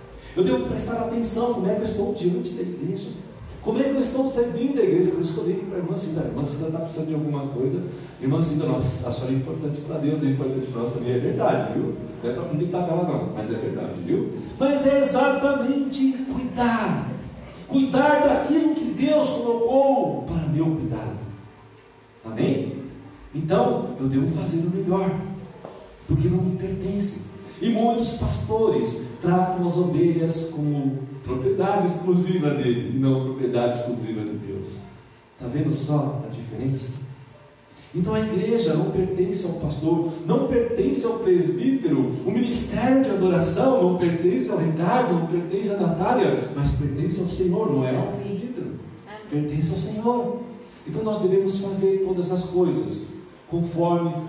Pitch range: 145-200 Hz